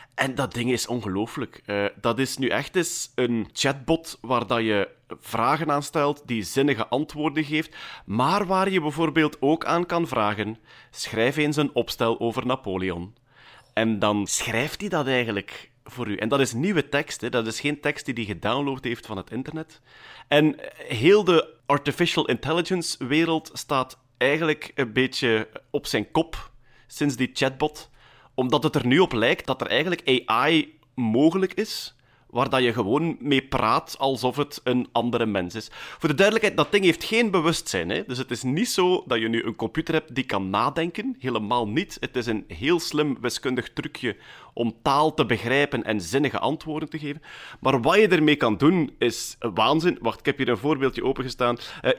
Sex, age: male, 30-49